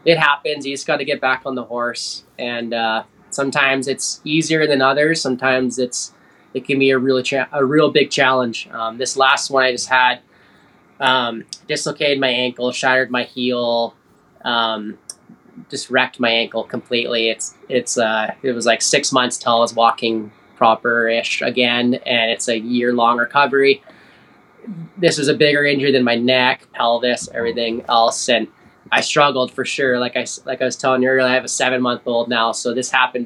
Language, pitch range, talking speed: English, 120-135 Hz, 190 wpm